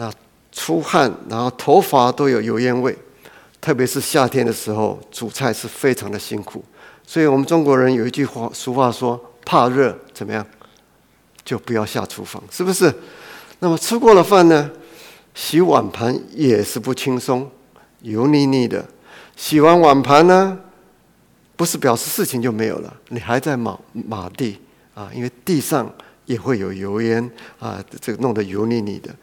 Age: 50-69